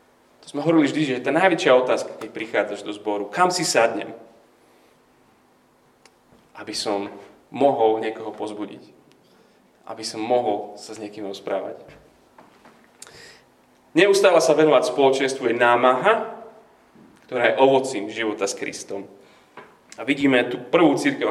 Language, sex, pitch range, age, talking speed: Slovak, male, 105-155 Hz, 30-49, 125 wpm